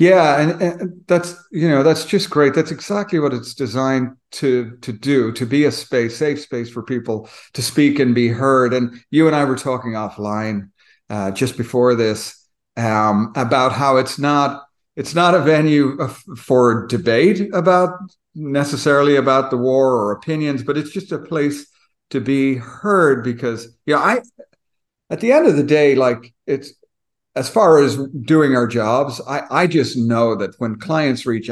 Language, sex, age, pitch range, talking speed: English, male, 50-69, 110-145 Hz, 175 wpm